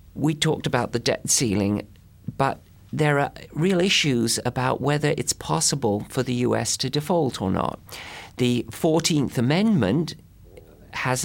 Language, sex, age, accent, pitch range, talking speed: English, male, 40-59, British, 105-135 Hz, 140 wpm